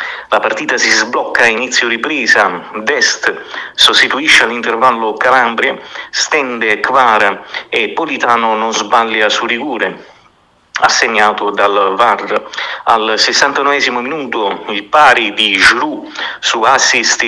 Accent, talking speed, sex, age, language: native, 110 wpm, male, 50-69, Italian